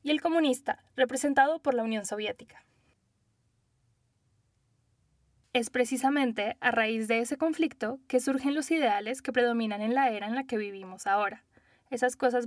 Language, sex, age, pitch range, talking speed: Spanish, female, 10-29, 215-260 Hz, 150 wpm